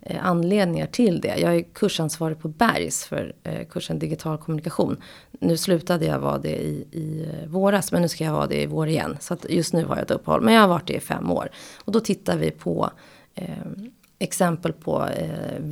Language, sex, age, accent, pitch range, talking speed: Swedish, female, 30-49, native, 155-190 Hz, 205 wpm